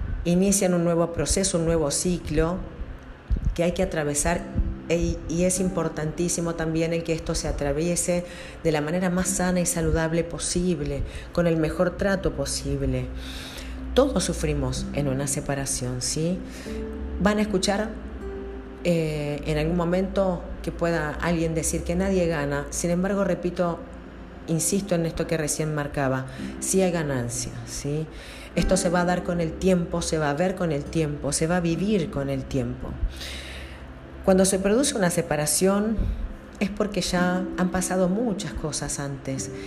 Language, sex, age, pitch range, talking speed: Spanish, female, 40-59, 145-180 Hz, 155 wpm